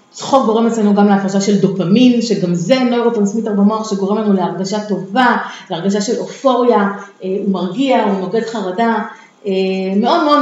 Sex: female